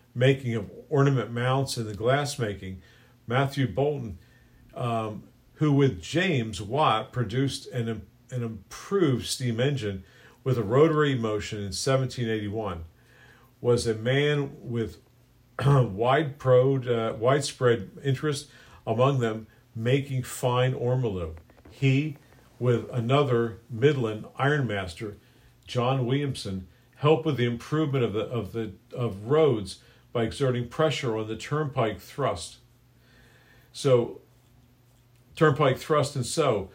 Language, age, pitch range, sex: English, 50-69, 115-140 Hz, male